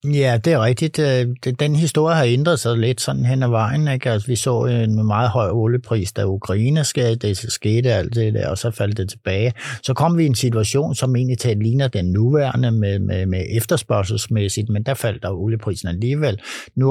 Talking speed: 200 wpm